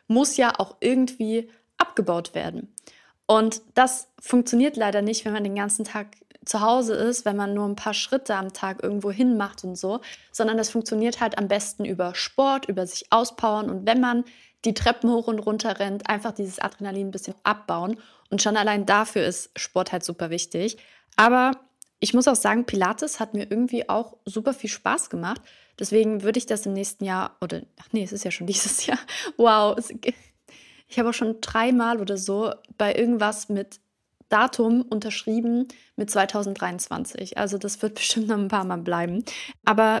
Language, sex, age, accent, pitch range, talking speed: German, female, 20-39, German, 200-235 Hz, 180 wpm